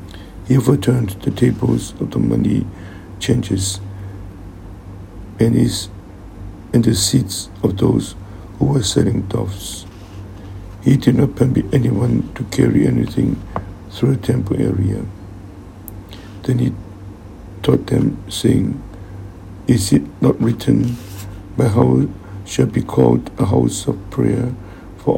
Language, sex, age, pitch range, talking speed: English, male, 60-79, 95-120 Hz, 115 wpm